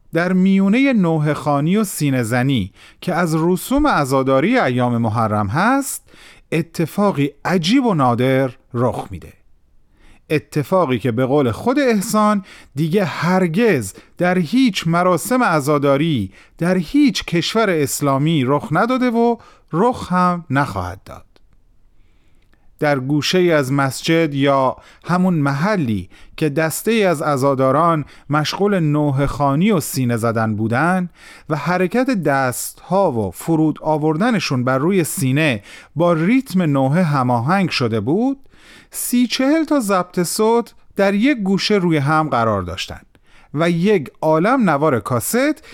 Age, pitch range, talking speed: 40-59, 125-190 Hz, 125 wpm